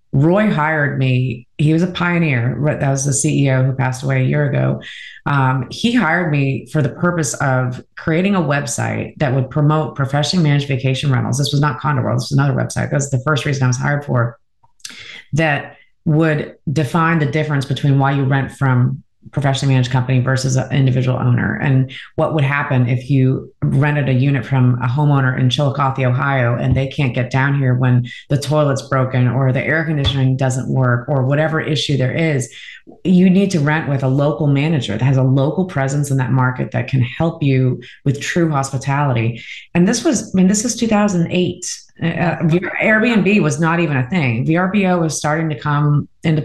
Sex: female